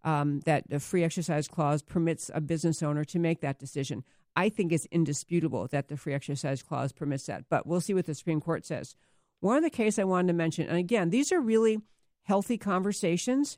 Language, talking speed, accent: English, 210 wpm, American